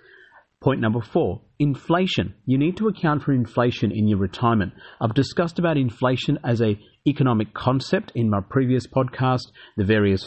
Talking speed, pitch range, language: 160 wpm, 110-140 Hz, English